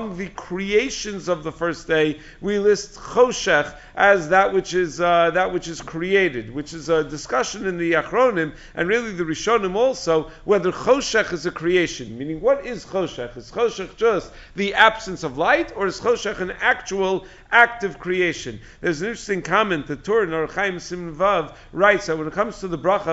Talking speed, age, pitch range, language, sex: 180 wpm, 50-69, 160-205 Hz, English, male